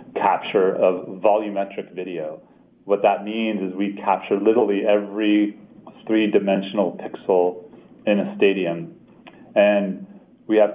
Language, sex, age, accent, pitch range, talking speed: English, male, 30-49, American, 90-105 Hz, 110 wpm